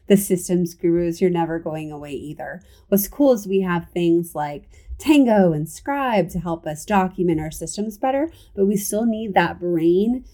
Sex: female